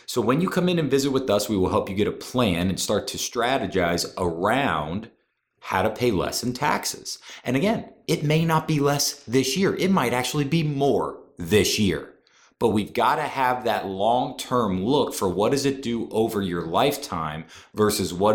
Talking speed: 200 wpm